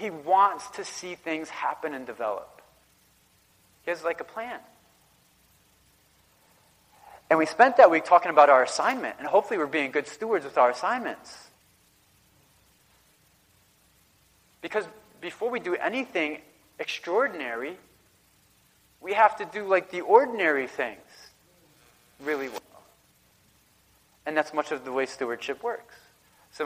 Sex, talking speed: male, 125 wpm